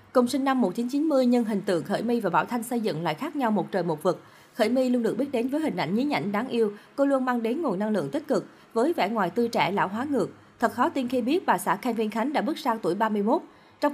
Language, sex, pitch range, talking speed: Vietnamese, female, 195-255 Hz, 290 wpm